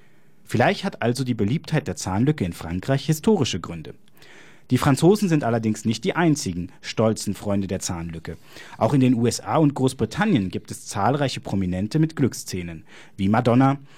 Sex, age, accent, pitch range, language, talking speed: male, 30-49, German, 110-150 Hz, German, 155 wpm